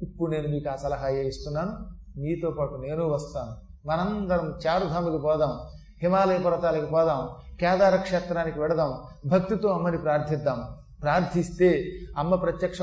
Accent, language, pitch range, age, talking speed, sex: native, Telugu, 150-210 Hz, 30-49, 115 wpm, male